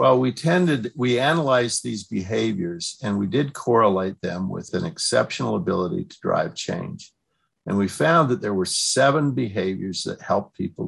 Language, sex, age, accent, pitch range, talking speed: English, male, 50-69, American, 100-130 Hz, 165 wpm